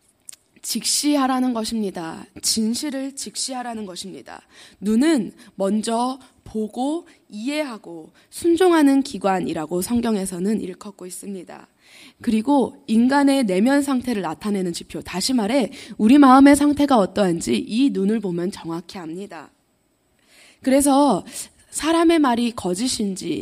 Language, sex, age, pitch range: Korean, female, 20-39, 205-275 Hz